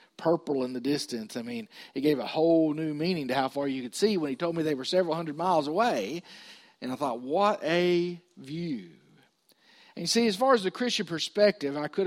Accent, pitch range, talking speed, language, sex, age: American, 155-210 Hz, 225 wpm, English, male, 50-69